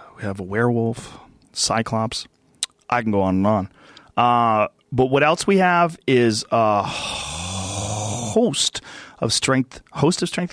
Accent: American